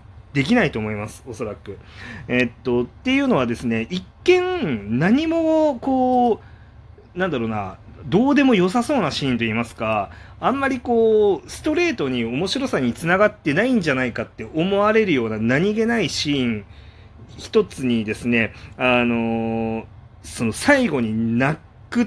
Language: Japanese